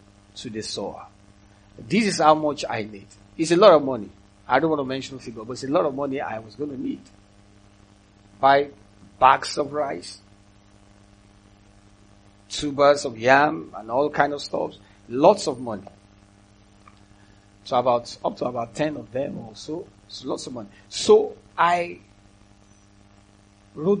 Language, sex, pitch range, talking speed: English, male, 100-145 Hz, 155 wpm